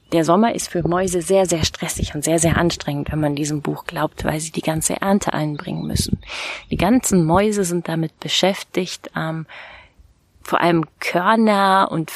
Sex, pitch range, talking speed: female, 150-195 Hz, 175 wpm